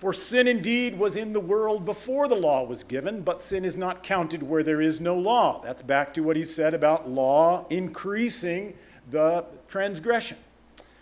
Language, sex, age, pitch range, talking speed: English, male, 50-69, 145-200 Hz, 180 wpm